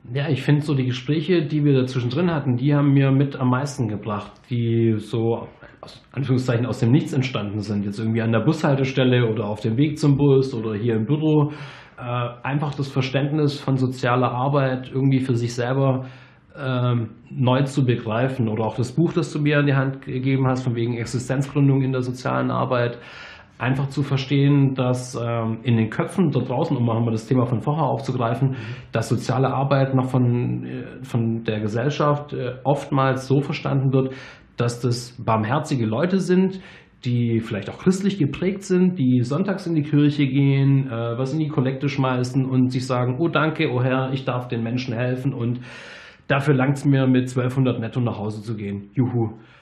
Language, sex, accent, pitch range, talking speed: German, male, German, 120-140 Hz, 180 wpm